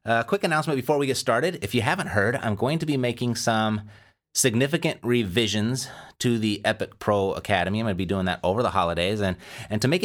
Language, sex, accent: English, male, American